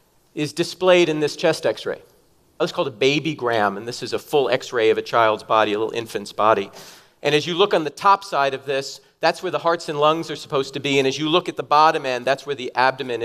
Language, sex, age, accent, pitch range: Korean, male, 40-59, American, 135-180 Hz